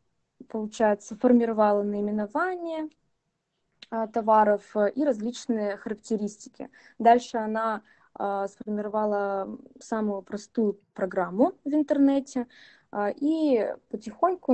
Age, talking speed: 20-39, 70 wpm